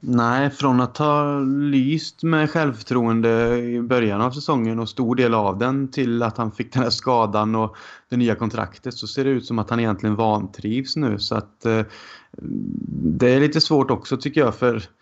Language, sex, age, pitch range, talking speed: Swedish, male, 30-49, 110-125 Hz, 190 wpm